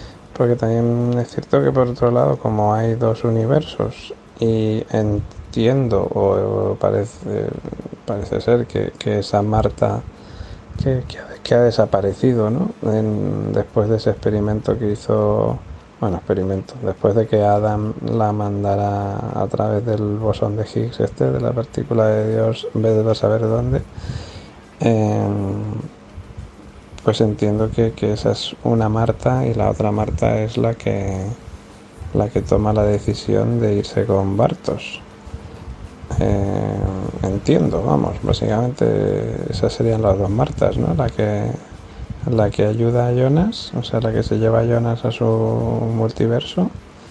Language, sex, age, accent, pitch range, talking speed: Spanish, male, 30-49, Spanish, 105-115 Hz, 145 wpm